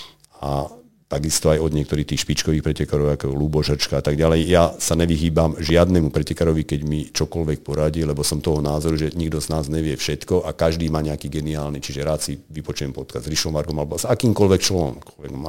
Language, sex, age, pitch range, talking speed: Slovak, male, 50-69, 75-85 Hz, 185 wpm